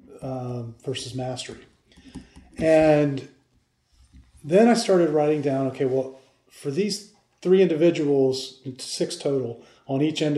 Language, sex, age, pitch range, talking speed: English, male, 40-59, 130-165 Hz, 115 wpm